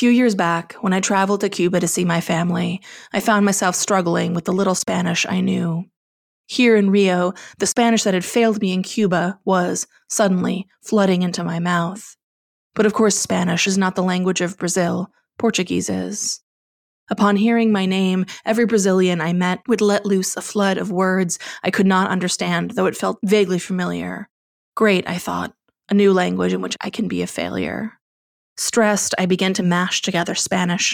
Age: 20-39